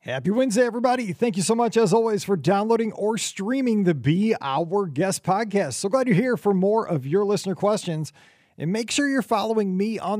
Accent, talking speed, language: American, 205 wpm, English